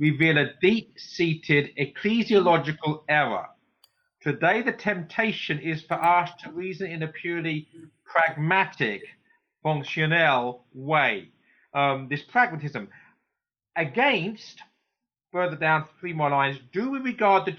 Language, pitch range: English, 155-195 Hz